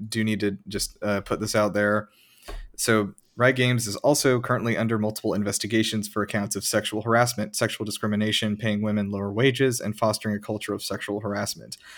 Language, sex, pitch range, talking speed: English, male, 105-110 Hz, 180 wpm